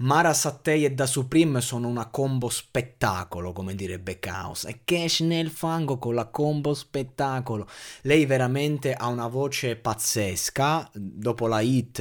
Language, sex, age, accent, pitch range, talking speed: Italian, male, 20-39, native, 105-135 Hz, 145 wpm